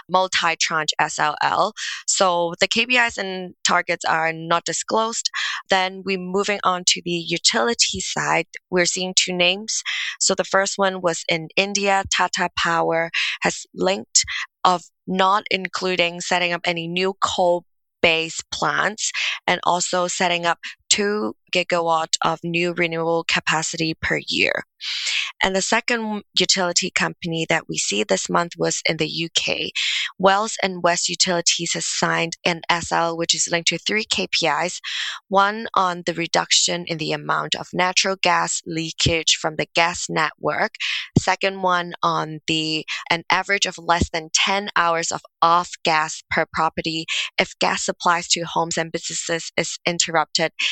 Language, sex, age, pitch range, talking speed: English, female, 20-39, 165-185 Hz, 145 wpm